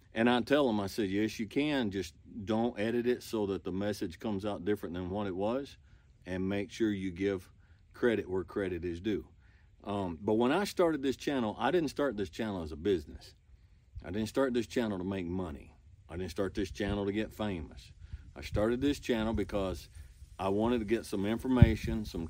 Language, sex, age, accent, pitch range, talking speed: English, male, 50-69, American, 90-115 Hz, 205 wpm